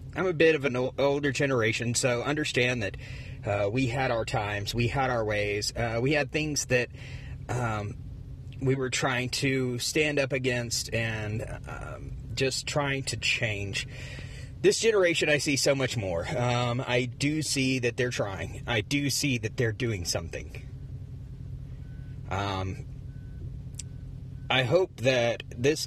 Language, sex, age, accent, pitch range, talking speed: English, male, 30-49, American, 120-130 Hz, 150 wpm